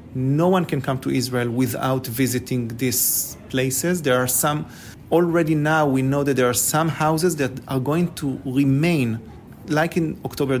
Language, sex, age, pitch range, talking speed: English, male, 40-59, 125-155 Hz, 170 wpm